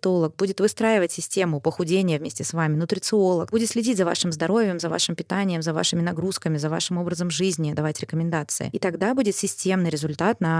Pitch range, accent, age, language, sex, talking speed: 175-210 Hz, native, 20-39, Russian, female, 175 wpm